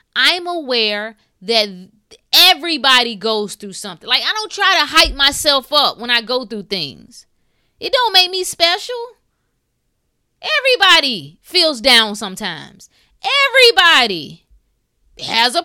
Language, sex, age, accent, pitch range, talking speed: English, female, 20-39, American, 210-285 Hz, 120 wpm